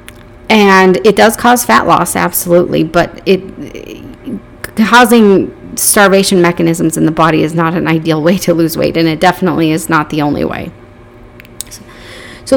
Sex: female